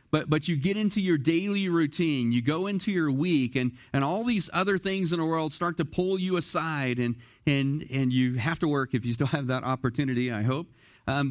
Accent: American